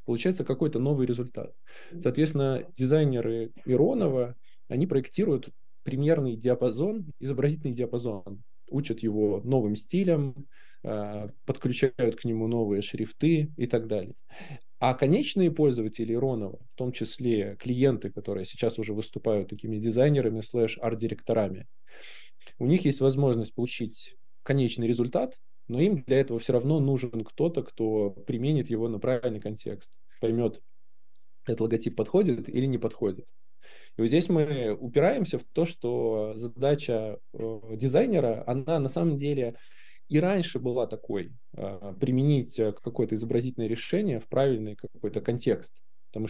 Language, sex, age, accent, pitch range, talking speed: Russian, male, 20-39, native, 110-140 Hz, 125 wpm